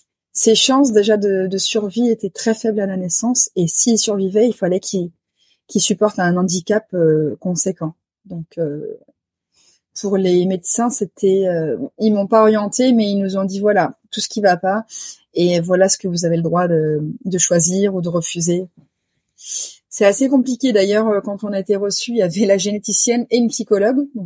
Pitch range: 180-220 Hz